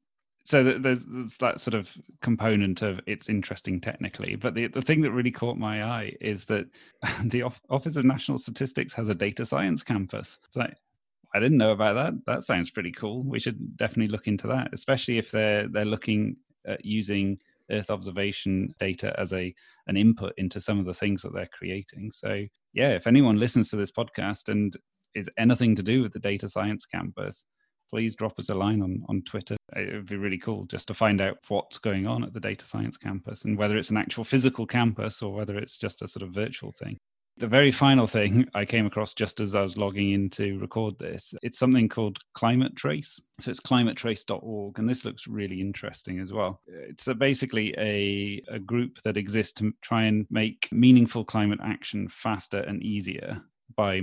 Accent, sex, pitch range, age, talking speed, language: British, male, 100-120 Hz, 30-49, 200 wpm, English